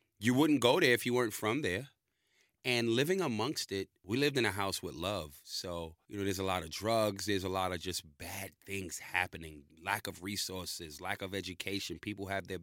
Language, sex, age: English, male, 30-49